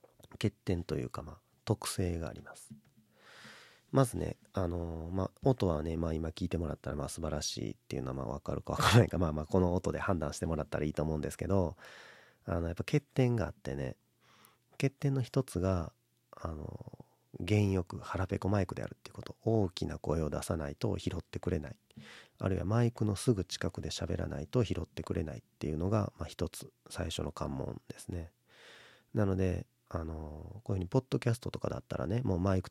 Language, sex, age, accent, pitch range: Japanese, male, 40-59, native, 80-110 Hz